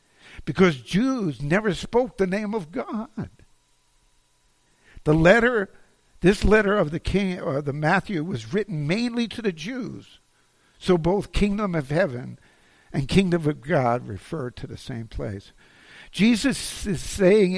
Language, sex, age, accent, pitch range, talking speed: English, male, 60-79, American, 130-195 Hz, 140 wpm